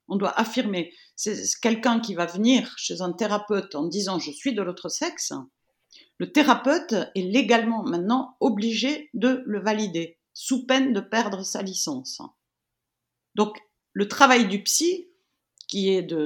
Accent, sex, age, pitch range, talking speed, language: French, female, 50-69, 180-255 Hz, 150 wpm, French